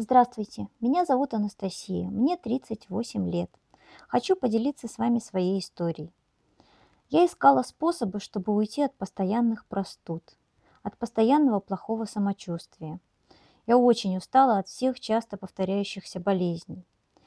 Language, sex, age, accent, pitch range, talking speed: Russian, male, 20-39, native, 190-255 Hz, 115 wpm